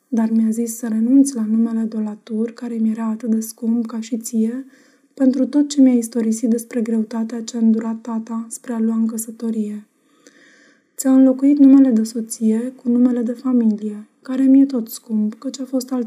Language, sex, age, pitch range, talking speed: Romanian, female, 20-39, 225-270 Hz, 185 wpm